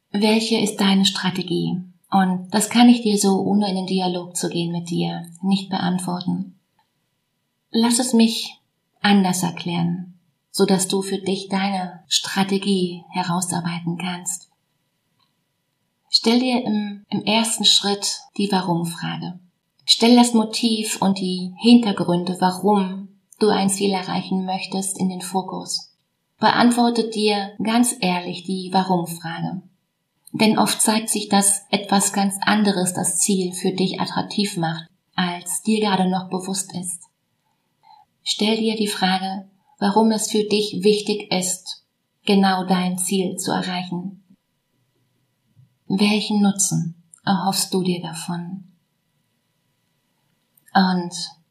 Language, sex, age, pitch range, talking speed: German, female, 30-49, 175-205 Hz, 120 wpm